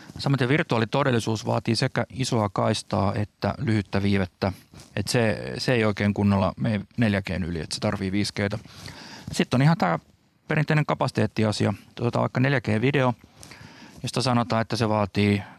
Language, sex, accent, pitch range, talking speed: Finnish, male, native, 105-130 Hz, 140 wpm